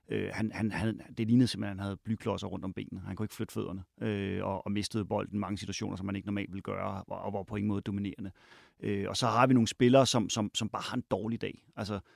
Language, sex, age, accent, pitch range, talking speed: Danish, male, 30-49, native, 100-120 Hz, 265 wpm